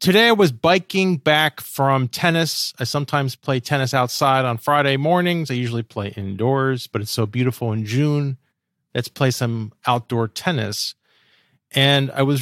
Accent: American